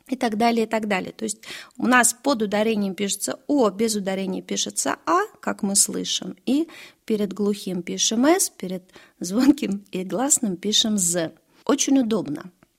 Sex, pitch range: female, 185-255 Hz